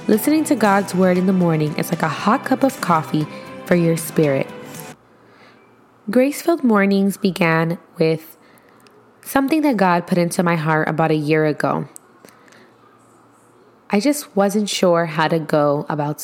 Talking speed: 150 wpm